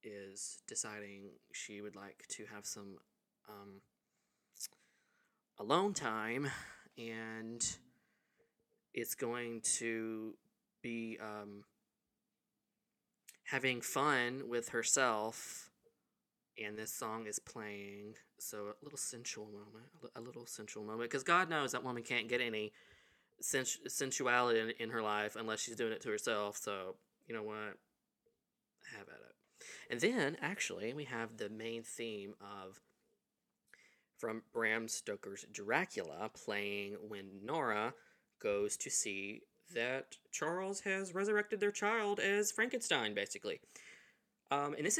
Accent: American